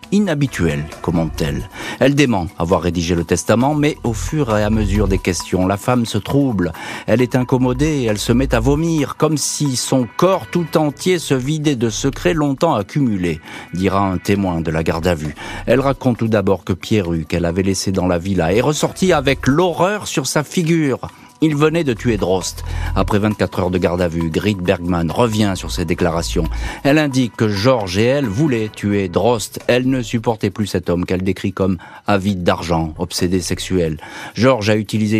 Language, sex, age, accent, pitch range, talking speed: French, male, 40-59, French, 90-130 Hz, 190 wpm